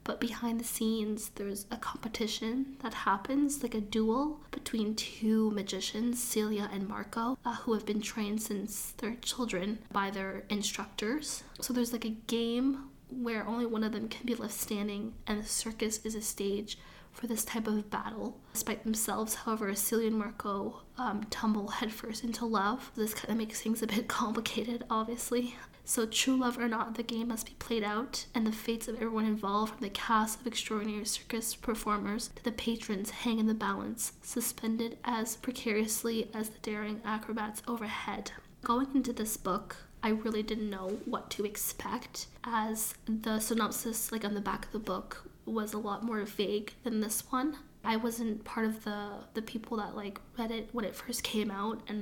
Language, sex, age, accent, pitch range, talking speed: English, female, 20-39, American, 215-235 Hz, 185 wpm